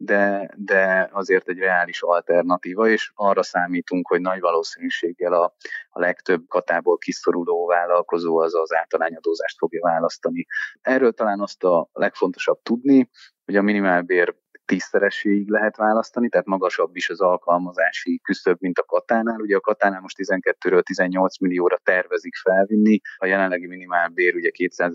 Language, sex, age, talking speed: Hungarian, male, 30-49, 140 wpm